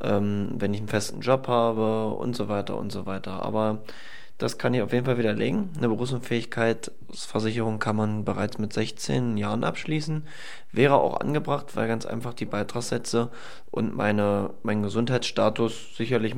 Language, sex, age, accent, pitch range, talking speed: German, male, 20-39, German, 105-125 Hz, 155 wpm